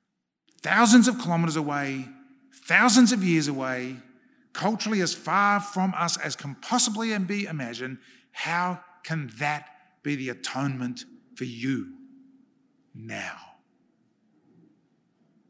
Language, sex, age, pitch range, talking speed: English, male, 50-69, 140-205 Hz, 105 wpm